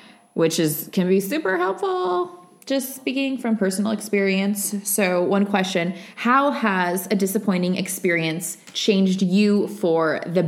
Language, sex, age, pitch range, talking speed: English, female, 20-39, 180-245 Hz, 130 wpm